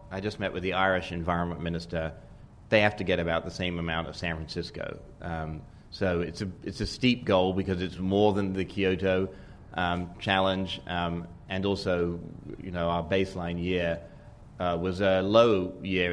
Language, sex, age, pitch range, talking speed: English, male, 30-49, 90-105 Hz, 180 wpm